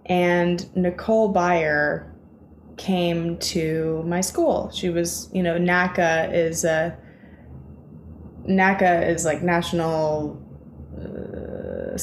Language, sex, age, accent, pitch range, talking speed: English, female, 20-39, American, 160-190 Hz, 95 wpm